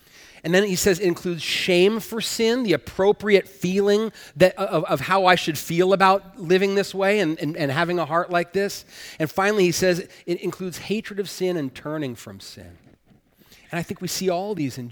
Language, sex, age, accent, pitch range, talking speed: English, male, 40-59, American, 135-200 Hz, 205 wpm